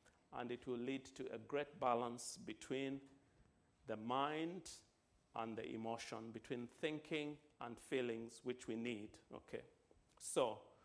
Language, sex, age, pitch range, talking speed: English, male, 50-69, 120-160 Hz, 125 wpm